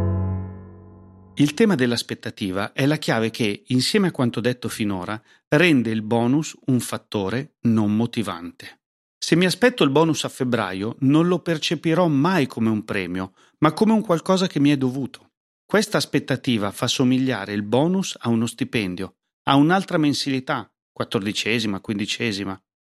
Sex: male